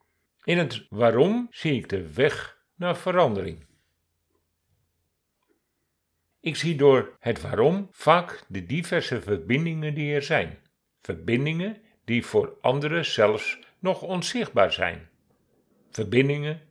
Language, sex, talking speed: Dutch, male, 110 wpm